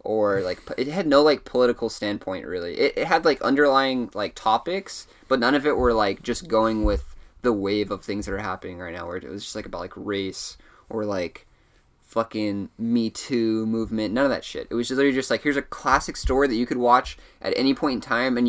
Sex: male